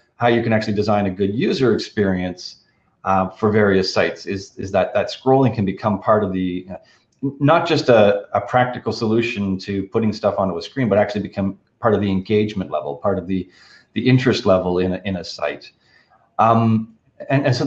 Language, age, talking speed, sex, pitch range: English, 30-49, 200 wpm, male, 100-130 Hz